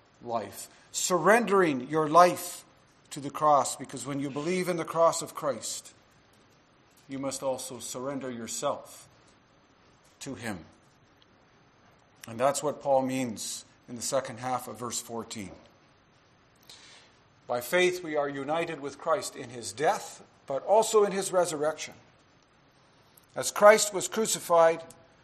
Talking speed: 130 wpm